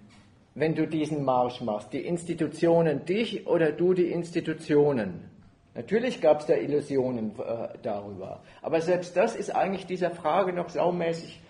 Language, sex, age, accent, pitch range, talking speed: German, male, 50-69, German, 140-190 Hz, 145 wpm